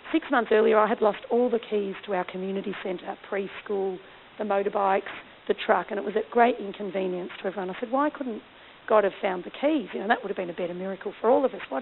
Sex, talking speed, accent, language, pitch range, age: female, 250 wpm, Australian, English, 200-245 Hz, 40-59